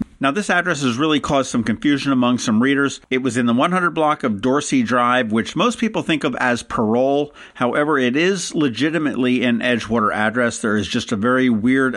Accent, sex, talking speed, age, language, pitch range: American, male, 200 wpm, 50-69, English, 115-145 Hz